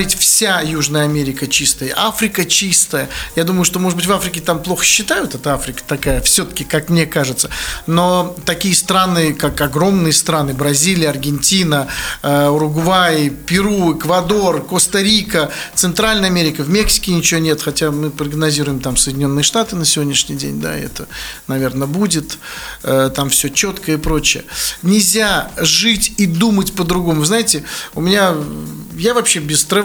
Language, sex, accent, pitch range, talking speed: Russian, male, native, 150-195 Hz, 145 wpm